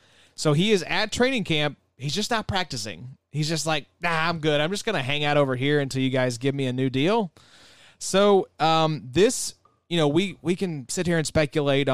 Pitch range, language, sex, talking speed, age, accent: 130-170 Hz, English, male, 220 wpm, 30-49, American